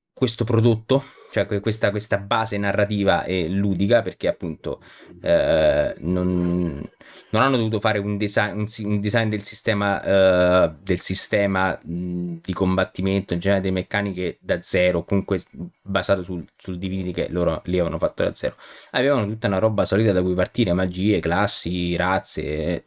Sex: male